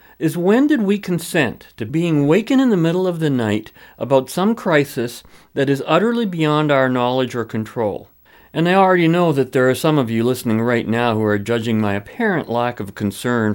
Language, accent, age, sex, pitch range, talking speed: English, American, 50-69, male, 115-165 Hz, 205 wpm